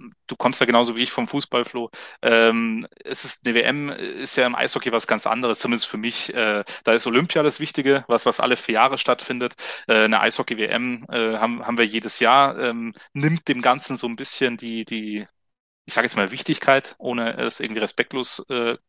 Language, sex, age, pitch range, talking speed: German, male, 30-49, 115-125 Hz, 200 wpm